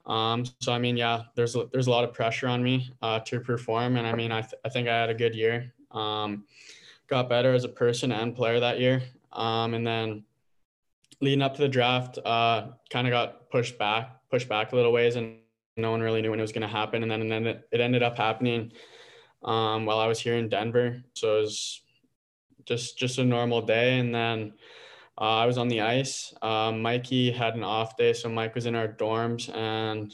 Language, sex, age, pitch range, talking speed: English, male, 20-39, 110-125 Hz, 225 wpm